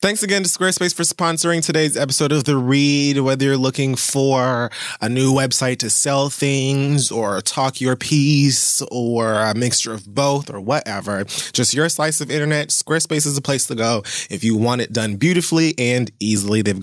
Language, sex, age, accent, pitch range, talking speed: English, male, 20-39, American, 110-140 Hz, 185 wpm